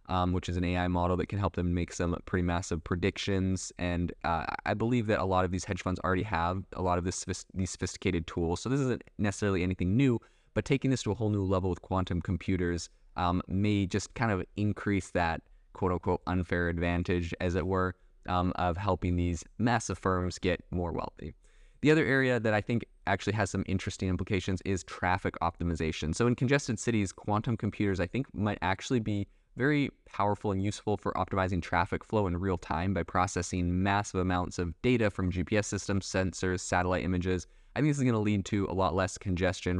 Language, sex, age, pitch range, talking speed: English, male, 20-39, 90-105 Hz, 200 wpm